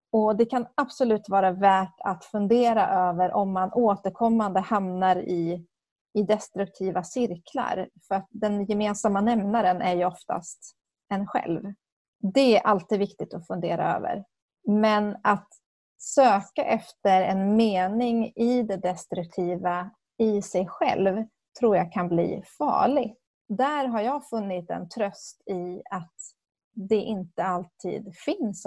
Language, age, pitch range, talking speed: English, 30-49, 180-225 Hz, 130 wpm